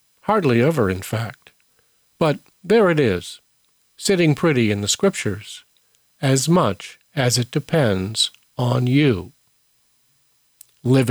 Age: 50-69